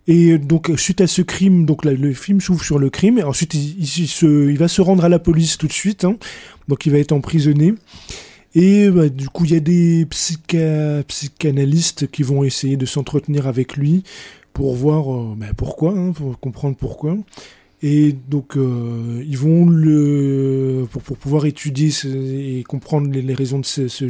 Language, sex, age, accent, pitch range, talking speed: French, male, 20-39, French, 135-160 Hz, 200 wpm